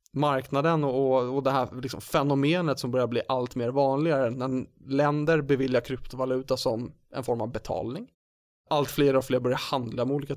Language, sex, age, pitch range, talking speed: English, male, 30-49, 130-155 Hz, 175 wpm